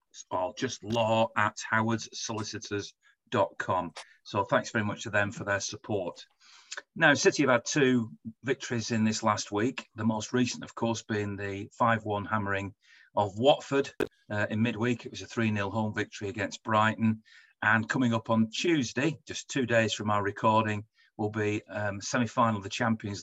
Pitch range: 105-125 Hz